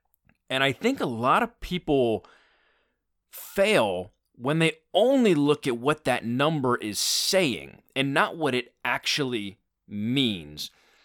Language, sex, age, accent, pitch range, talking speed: English, male, 30-49, American, 115-150 Hz, 130 wpm